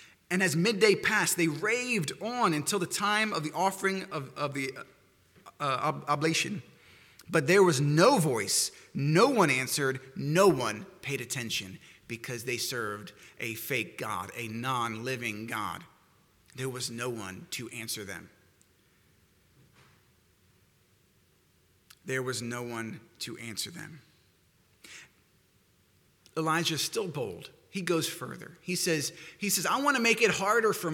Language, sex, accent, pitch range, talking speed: English, male, American, 145-210 Hz, 140 wpm